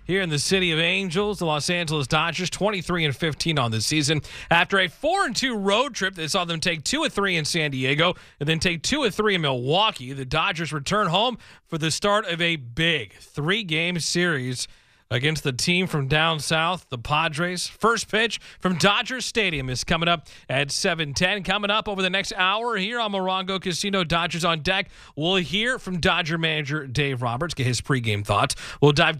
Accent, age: American, 30-49